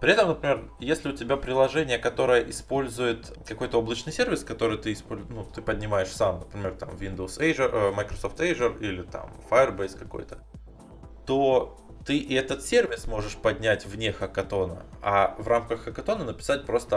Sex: male